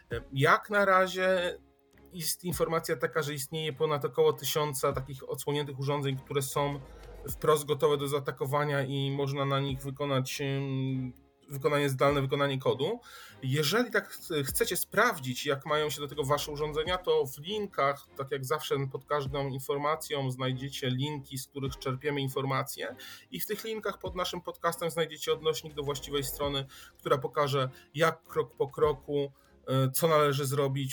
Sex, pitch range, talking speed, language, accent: male, 135-165 Hz, 150 wpm, Polish, native